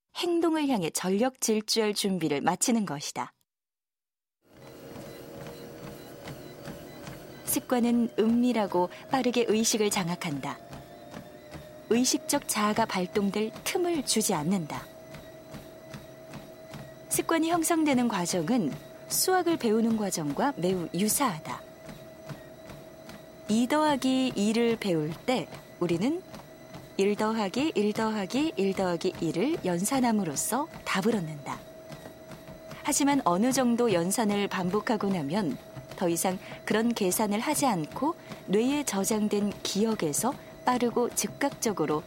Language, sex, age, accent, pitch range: Korean, female, 20-39, native, 185-255 Hz